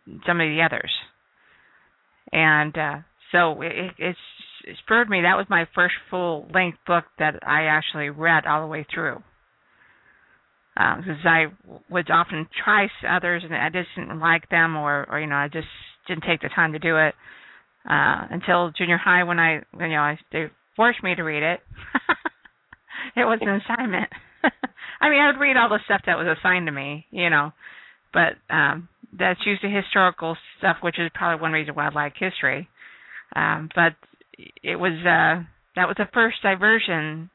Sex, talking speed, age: female, 185 wpm, 50-69